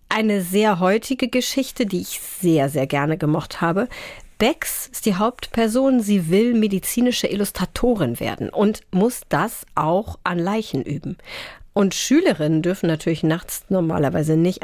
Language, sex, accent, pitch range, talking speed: German, female, German, 175-230 Hz, 140 wpm